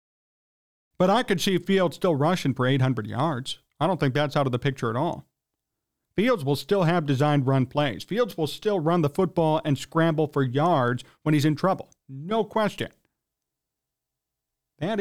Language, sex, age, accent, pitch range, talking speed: English, male, 40-59, American, 135-185 Hz, 175 wpm